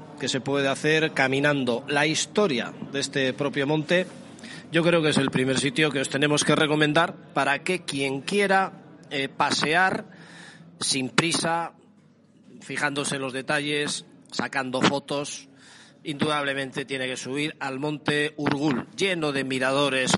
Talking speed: 140 wpm